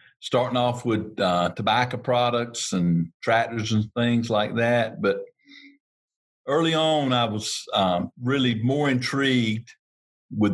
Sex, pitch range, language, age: male, 105-135 Hz, English, 50-69